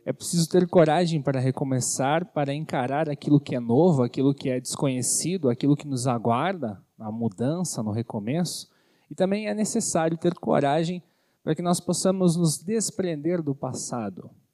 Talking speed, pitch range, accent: 155 wpm, 130-175 Hz, Brazilian